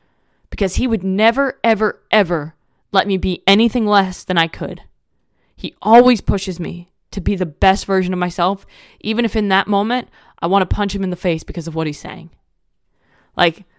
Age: 20-39